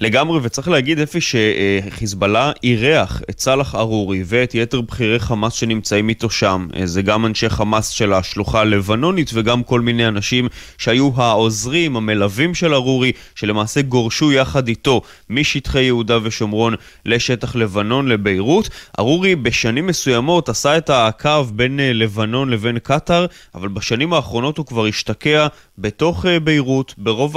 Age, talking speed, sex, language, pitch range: 20-39, 135 wpm, male, Hebrew, 110-145 Hz